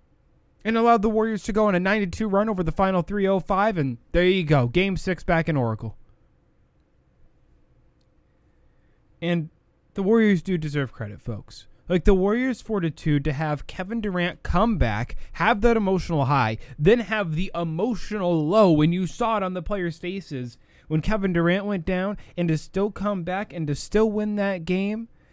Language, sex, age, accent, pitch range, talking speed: English, male, 20-39, American, 155-215 Hz, 175 wpm